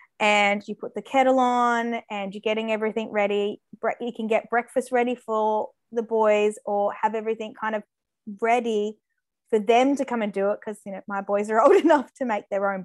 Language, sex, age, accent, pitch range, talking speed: English, female, 20-39, Australian, 210-245 Hz, 205 wpm